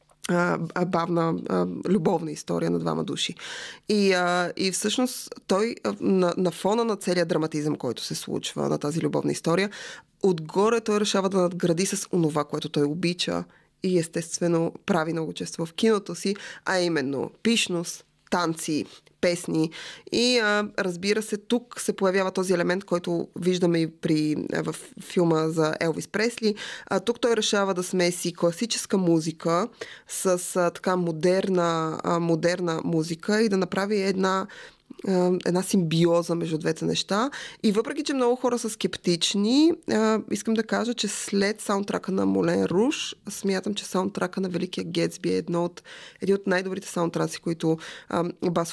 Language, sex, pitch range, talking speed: Bulgarian, female, 165-195 Hz, 150 wpm